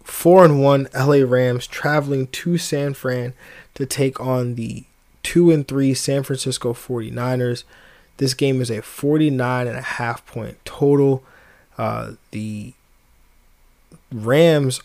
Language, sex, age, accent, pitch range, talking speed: English, male, 20-39, American, 120-135 Hz, 115 wpm